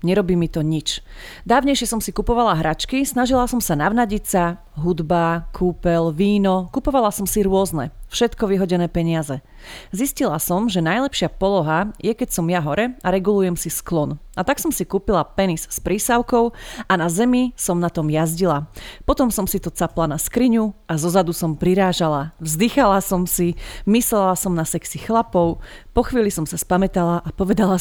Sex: female